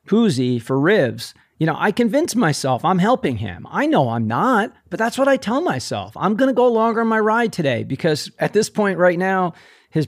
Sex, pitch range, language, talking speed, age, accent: male, 135-180 Hz, English, 225 wpm, 40-59, American